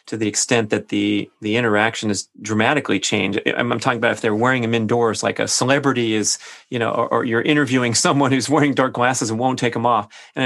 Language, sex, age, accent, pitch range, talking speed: English, male, 30-49, American, 110-125 Hz, 225 wpm